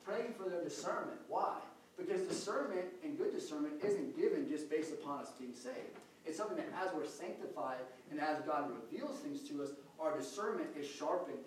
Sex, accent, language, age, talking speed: male, American, English, 30-49, 185 wpm